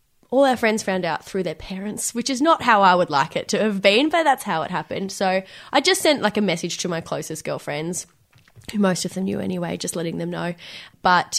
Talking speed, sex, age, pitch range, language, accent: 245 wpm, female, 10-29, 165-200 Hz, English, Australian